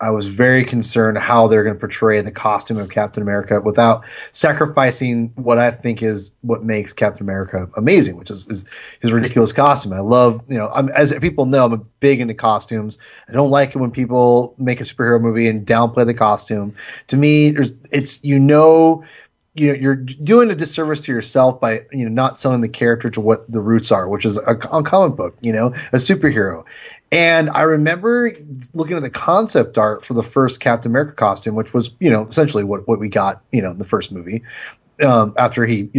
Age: 30-49